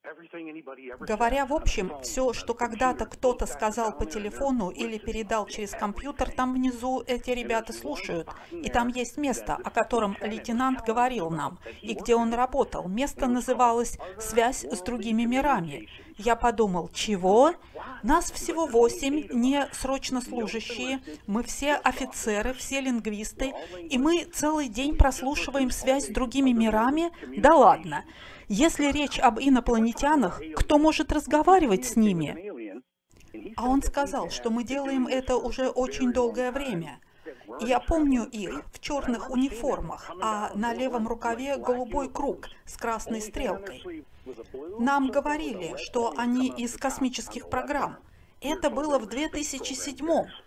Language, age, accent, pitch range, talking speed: Russian, 40-59, native, 230-285 Hz, 130 wpm